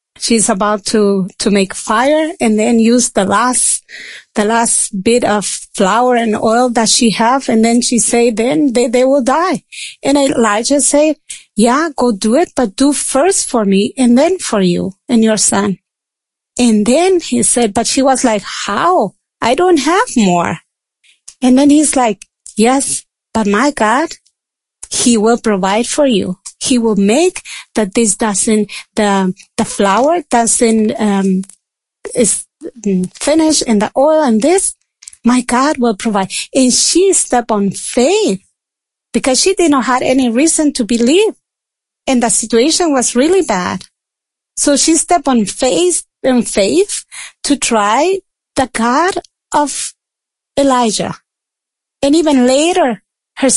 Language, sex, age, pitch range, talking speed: English, female, 30-49, 220-285 Hz, 150 wpm